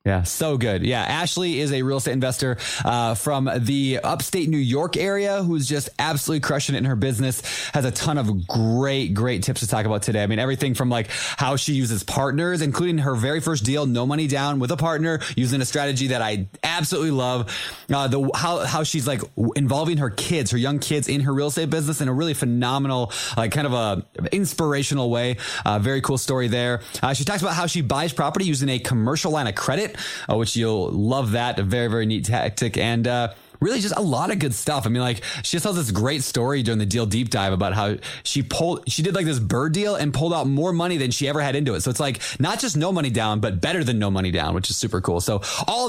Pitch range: 120-155 Hz